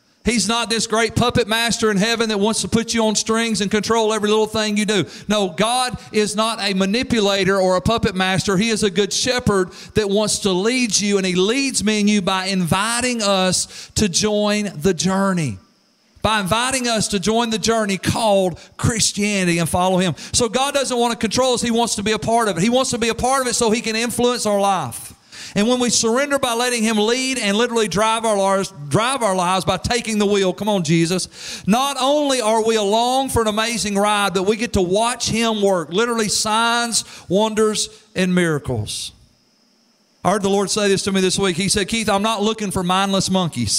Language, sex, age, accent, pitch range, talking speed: English, male, 40-59, American, 190-225 Hz, 215 wpm